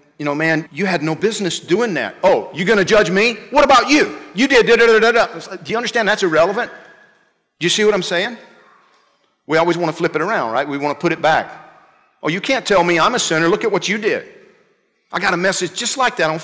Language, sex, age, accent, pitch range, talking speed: English, male, 50-69, American, 150-200 Hz, 255 wpm